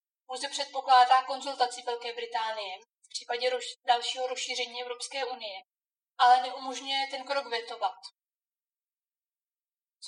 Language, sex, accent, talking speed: Czech, female, native, 100 wpm